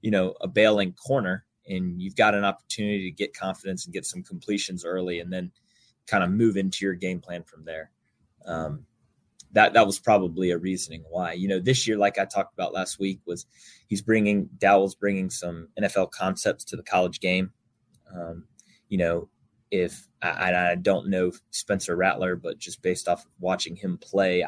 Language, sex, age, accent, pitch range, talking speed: English, male, 20-39, American, 90-105 Hz, 185 wpm